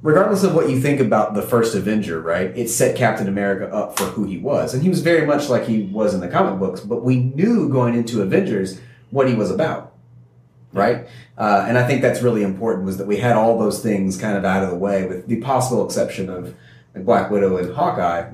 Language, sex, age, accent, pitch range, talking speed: English, male, 30-49, American, 95-125 Hz, 230 wpm